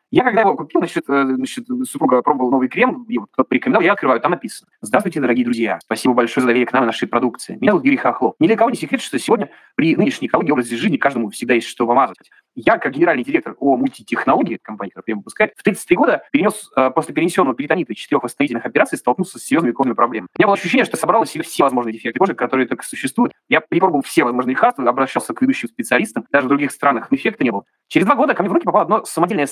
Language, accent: Russian, native